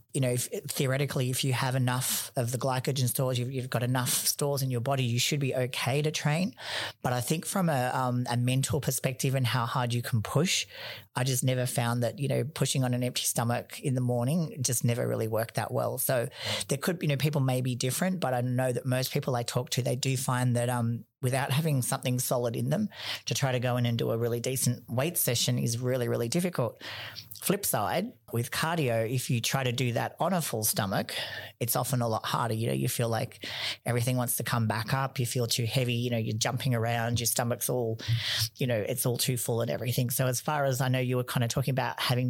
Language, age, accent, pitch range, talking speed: English, 40-59, Australian, 120-135 Hz, 240 wpm